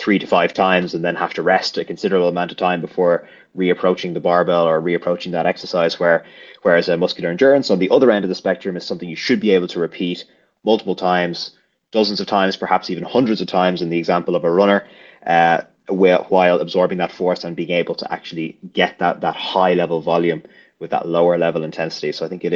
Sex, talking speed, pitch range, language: male, 220 wpm, 85-100 Hz, English